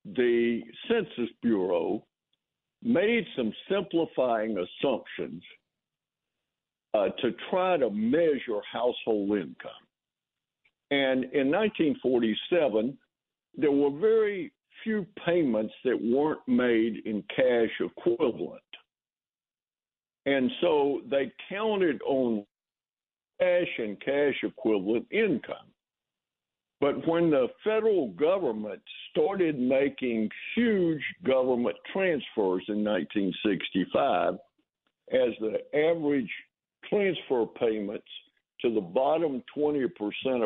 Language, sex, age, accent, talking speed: English, male, 60-79, American, 90 wpm